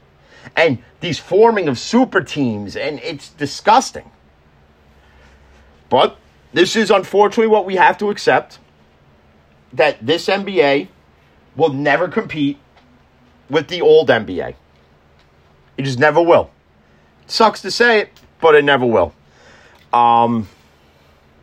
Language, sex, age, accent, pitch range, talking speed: English, male, 40-59, American, 90-140 Hz, 120 wpm